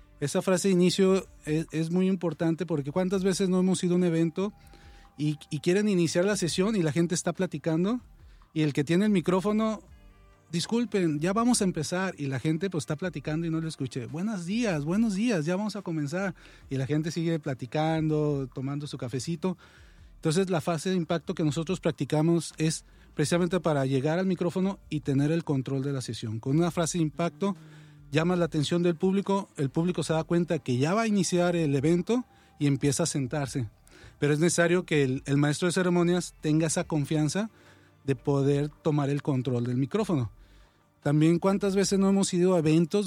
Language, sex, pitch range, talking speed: English, male, 145-185 Hz, 195 wpm